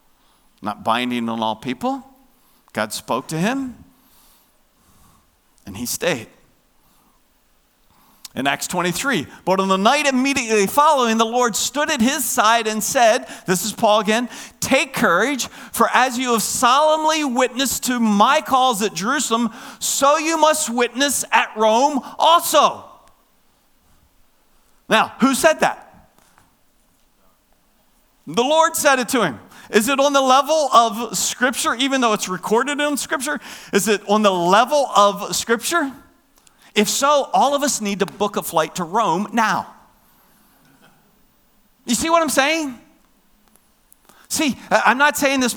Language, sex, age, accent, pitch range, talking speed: English, male, 50-69, American, 215-280 Hz, 140 wpm